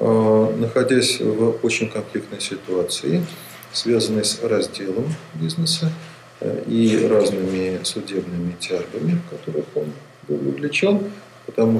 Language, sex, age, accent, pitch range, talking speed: Russian, male, 40-59, native, 115-165 Hz, 90 wpm